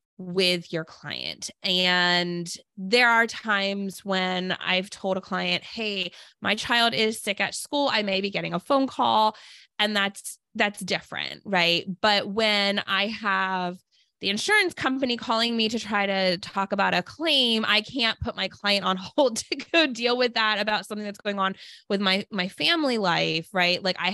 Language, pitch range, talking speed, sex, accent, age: English, 180-225 Hz, 180 wpm, female, American, 20-39